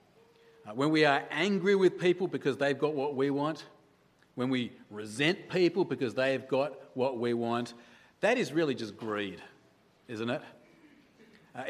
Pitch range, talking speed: 140-205 Hz, 155 wpm